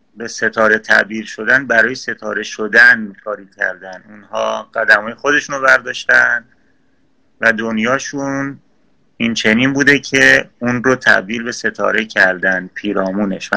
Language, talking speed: Persian, 120 wpm